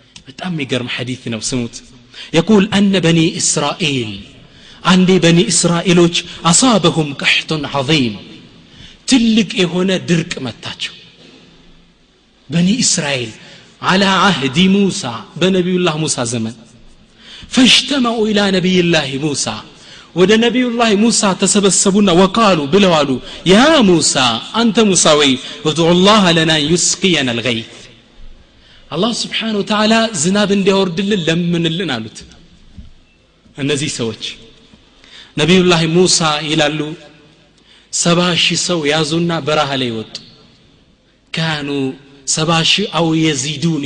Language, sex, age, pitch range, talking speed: Amharic, male, 30-49, 145-185 Hz, 95 wpm